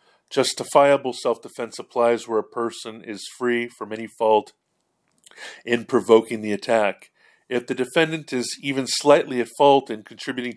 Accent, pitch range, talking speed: American, 110-125 Hz, 140 wpm